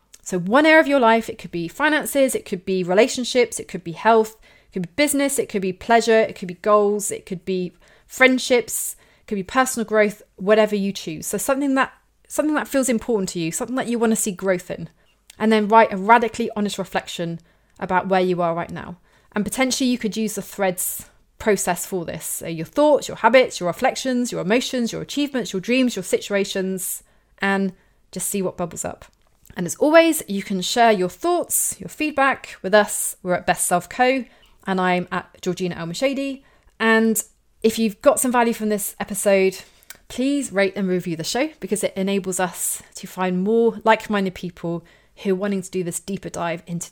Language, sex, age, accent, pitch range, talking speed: English, female, 30-49, British, 185-235 Hz, 200 wpm